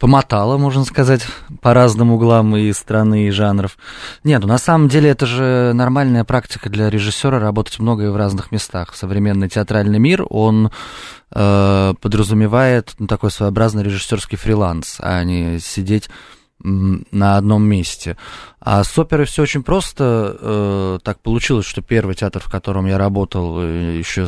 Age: 20-39